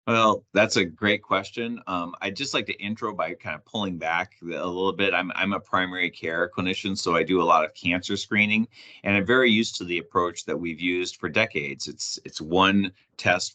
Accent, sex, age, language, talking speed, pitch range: American, male, 30-49, English, 215 wpm, 85-100 Hz